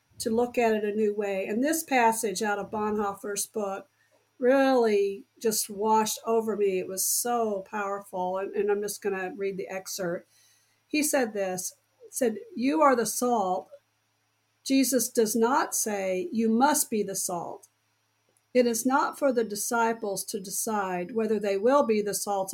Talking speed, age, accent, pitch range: 170 wpm, 50-69, American, 195-250 Hz